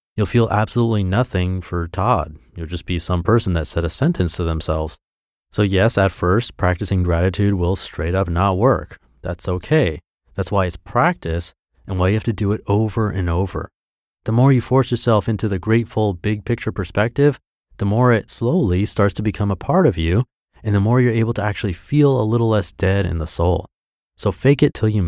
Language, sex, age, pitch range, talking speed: English, male, 30-49, 90-115 Hz, 205 wpm